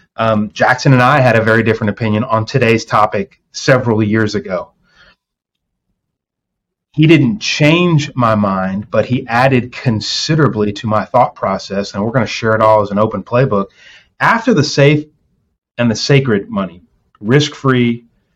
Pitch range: 105-125 Hz